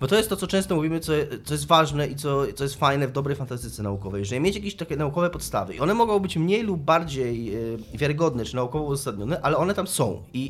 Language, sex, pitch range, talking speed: Polish, male, 120-165 Hz, 245 wpm